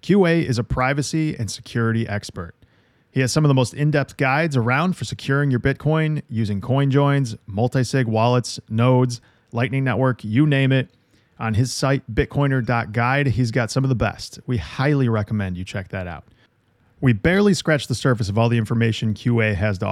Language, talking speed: English, 180 wpm